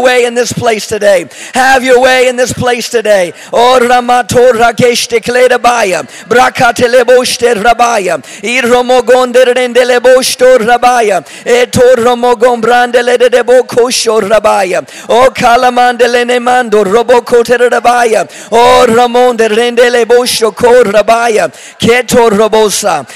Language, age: English, 50-69